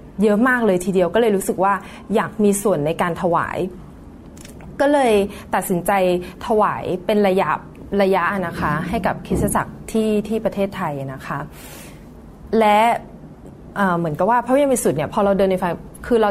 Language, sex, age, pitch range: Thai, female, 20-39, 175-220 Hz